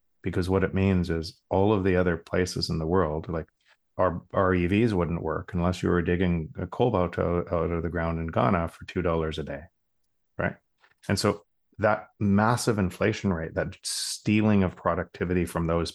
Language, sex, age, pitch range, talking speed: English, male, 30-49, 85-100 Hz, 190 wpm